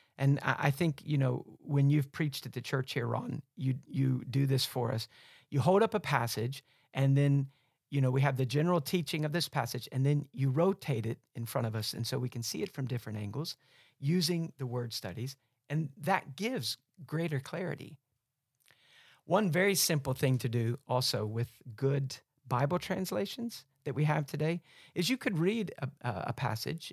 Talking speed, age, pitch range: 190 wpm, 50-69, 130-160 Hz